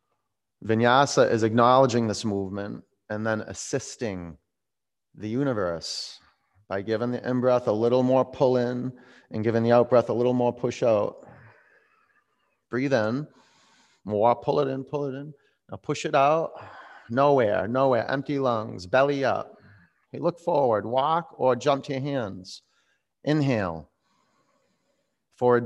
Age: 30-49